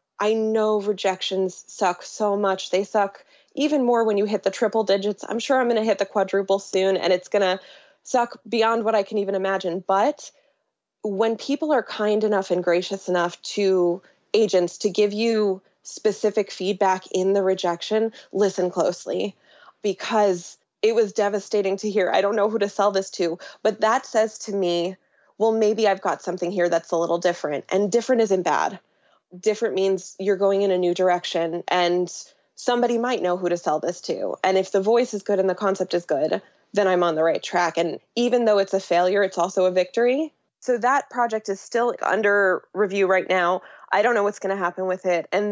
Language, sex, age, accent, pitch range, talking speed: English, female, 20-39, American, 185-215 Hz, 200 wpm